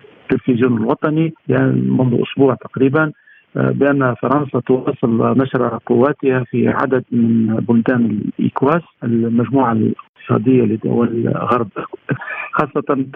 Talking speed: 95 wpm